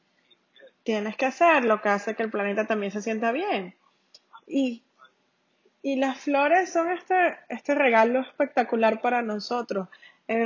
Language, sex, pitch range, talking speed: English, female, 205-270 Hz, 145 wpm